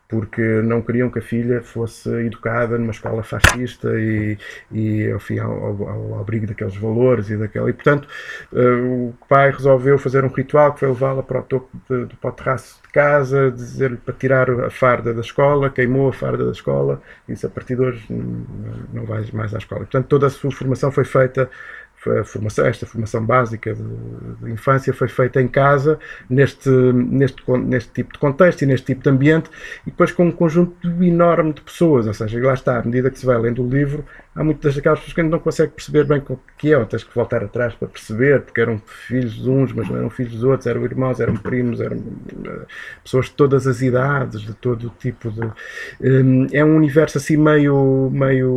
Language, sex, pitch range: Portuguese, male, 115-135 Hz